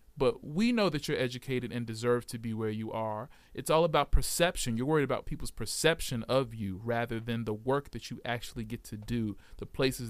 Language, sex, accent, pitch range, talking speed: English, male, American, 115-160 Hz, 215 wpm